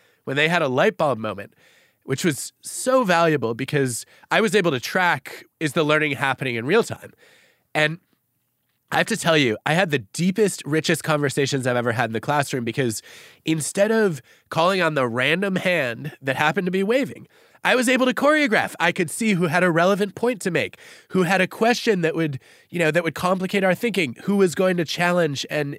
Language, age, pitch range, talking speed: English, 20-39, 135-195 Hz, 205 wpm